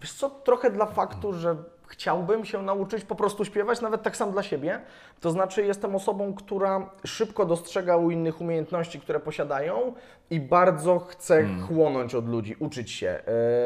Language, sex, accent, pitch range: Polish, male, native, 145-190 Hz